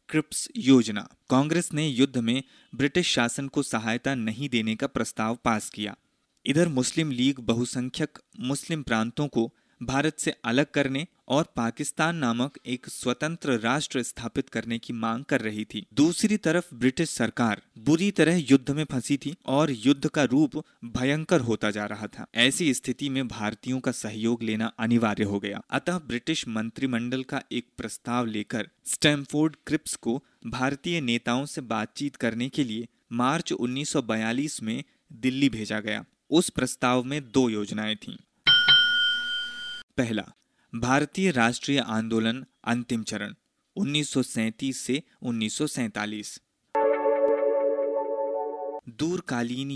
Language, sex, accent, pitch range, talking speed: Hindi, male, native, 115-150 Hz, 130 wpm